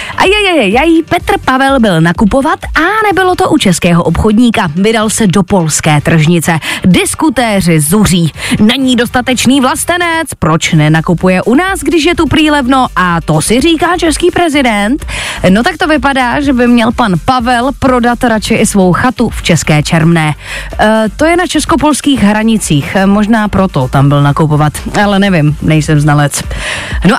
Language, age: Czech, 20-39